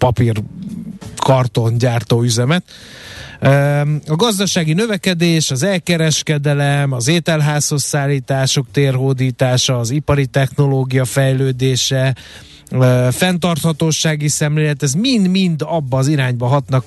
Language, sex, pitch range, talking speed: Hungarian, male, 130-160 Hz, 90 wpm